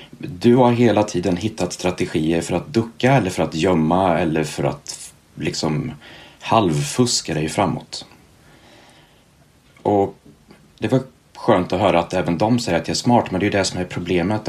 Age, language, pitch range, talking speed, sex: 40-59, Swedish, 85-115 Hz, 175 wpm, male